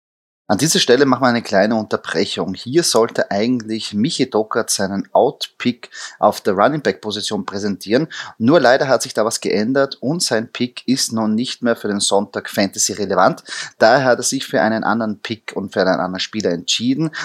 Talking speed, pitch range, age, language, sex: 180 wpm, 105-120 Hz, 30-49, German, male